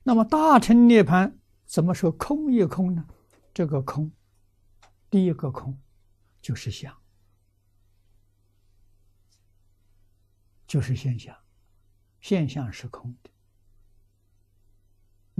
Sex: male